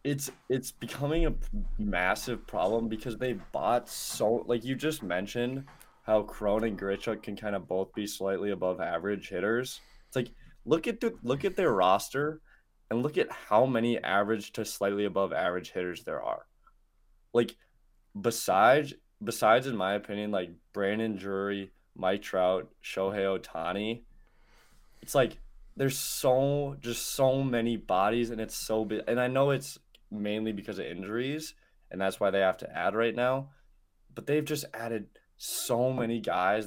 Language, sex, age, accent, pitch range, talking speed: English, male, 20-39, American, 100-130 Hz, 160 wpm